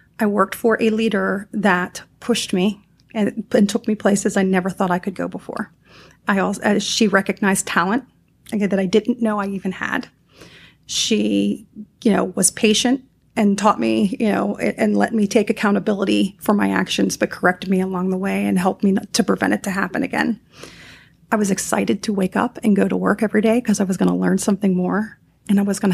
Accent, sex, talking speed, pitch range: American, female, 210 wpm, 190-220 Hz